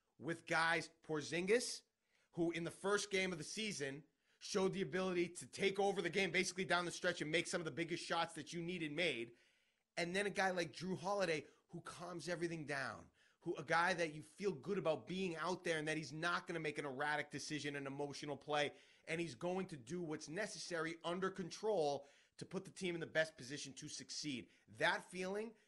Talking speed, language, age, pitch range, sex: 215 wpm, English, 30-49, 150-180 Hz, male